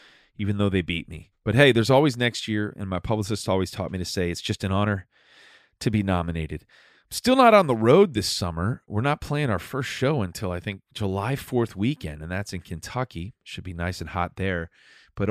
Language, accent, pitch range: English, American, 95-120 Hz